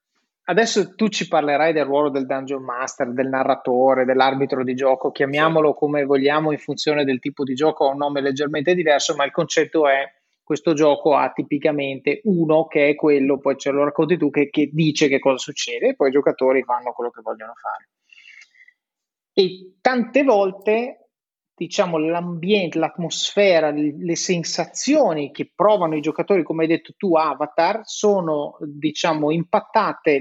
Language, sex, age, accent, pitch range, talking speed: Italian, male, 30-49, native, 140-180 Hz, 160 wpm